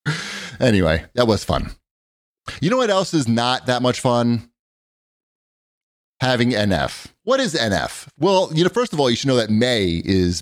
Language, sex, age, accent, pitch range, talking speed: English, male, 30-49, American, 95-125 Hz, 175 wpm